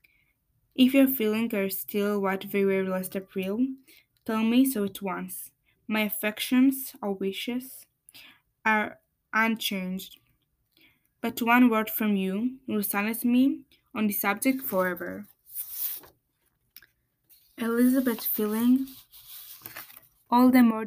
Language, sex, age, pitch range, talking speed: English, female, 20-39, 195-240 Hz, 110 wpm